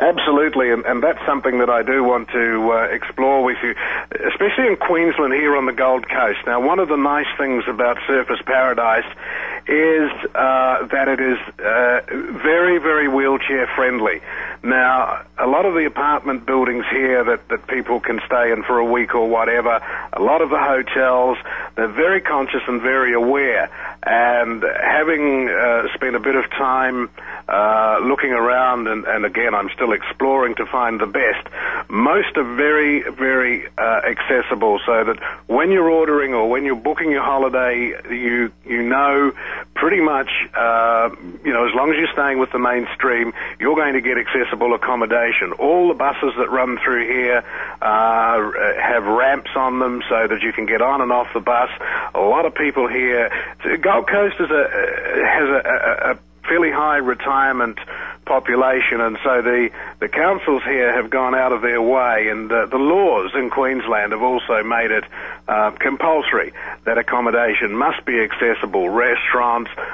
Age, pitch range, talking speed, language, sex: 50-69, 120-140 Hz, 170 wpm, English, male